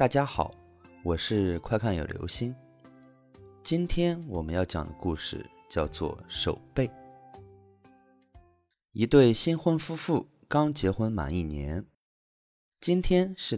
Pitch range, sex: 90-140 Hz, male